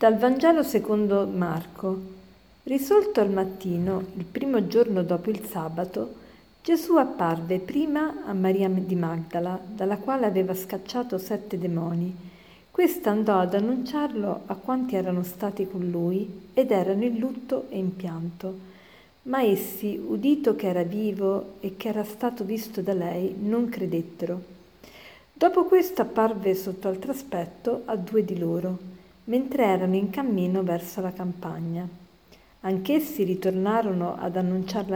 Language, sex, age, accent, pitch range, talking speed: Italian, female, 50-69, native, 185-225 Hz, 135 wpm